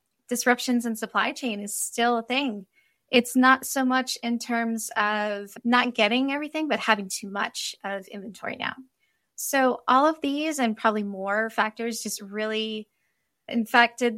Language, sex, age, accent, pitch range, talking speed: English, female, 10-29, American, 210-250 Hz, 150 wpm